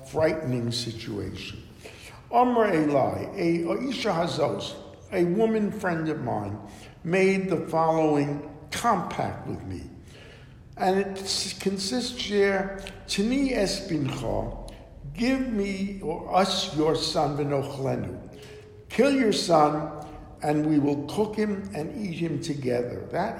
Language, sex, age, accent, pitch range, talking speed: English, male, 60-79, American, 130-185 Hz, 110 wpm